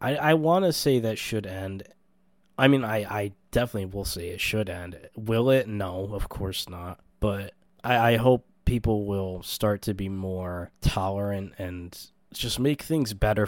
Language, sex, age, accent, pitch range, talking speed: English, male, 20-39, American, 95-115 Hz, 175 wpm